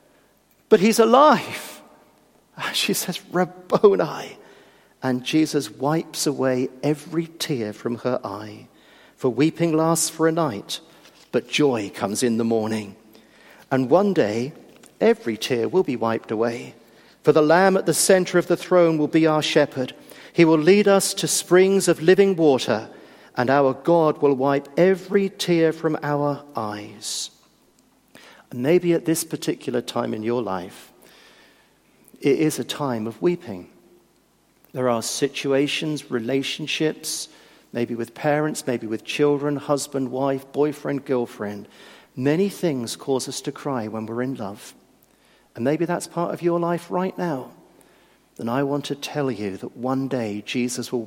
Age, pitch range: 50-69, 120-165 Hz